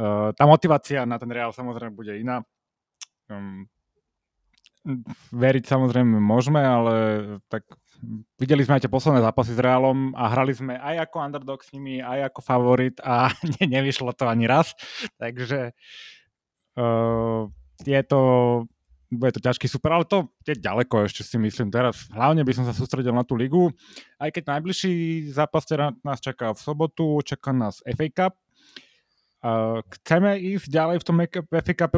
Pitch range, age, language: 120-155 Hz, 20-39, Slovak